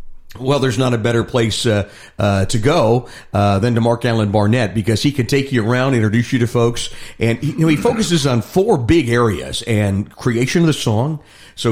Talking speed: 205 wpm